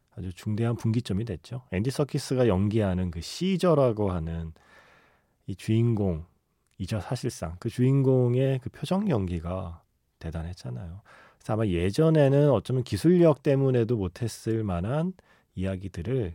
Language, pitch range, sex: Korean, 95-135 Hz, male